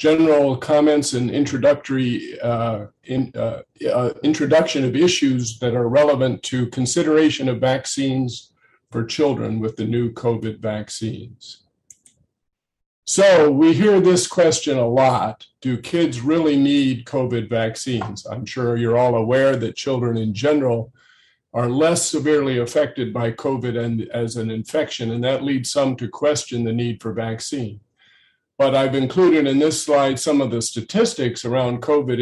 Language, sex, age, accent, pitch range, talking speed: English, male, 50-69, American, 115-145 Hz, 145 wpm